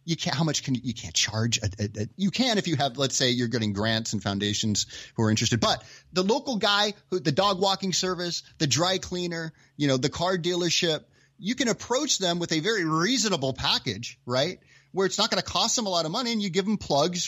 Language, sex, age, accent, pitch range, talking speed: English, male, 30-49, American, 120-165 Hz, 245 wpm